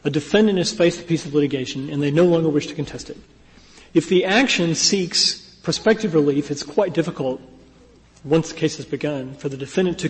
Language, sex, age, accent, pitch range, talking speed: English, male, 40-59, American, 145-175 Hz, 200 wpm